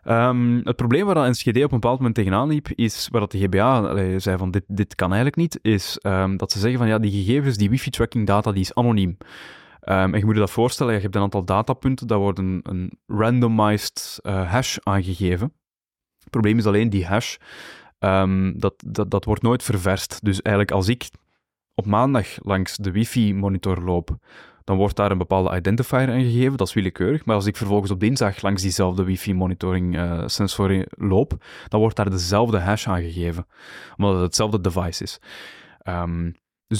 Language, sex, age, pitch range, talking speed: Dutch, male, 20-39, 95-115 Hz, 185 wpm